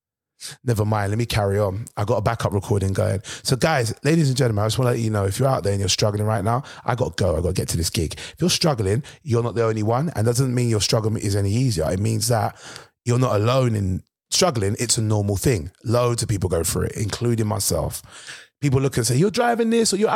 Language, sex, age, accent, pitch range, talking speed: English, male, 30-49, British, 110-140 Hz, 265 wpm